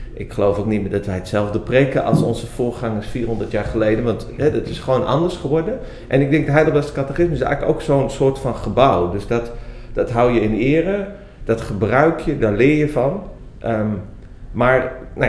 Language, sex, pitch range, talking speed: Dutch, male, 100-130 Hz, 200 wpm